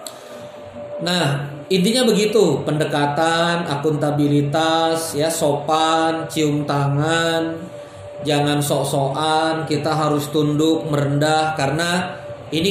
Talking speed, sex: 80 wpm, male